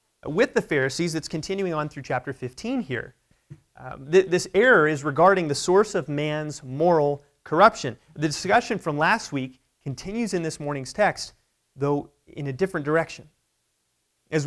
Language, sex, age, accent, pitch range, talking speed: English, male, 30-49, American, 140-185 Hz, 155 wpm